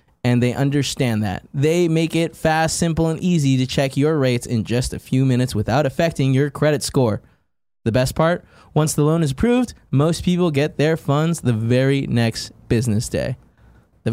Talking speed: 185 wpm